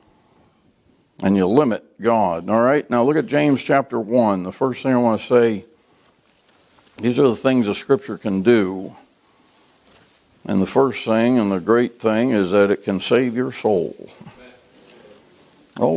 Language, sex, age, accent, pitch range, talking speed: English, male, 60-79, American, 115-140 Hz, 160 wpm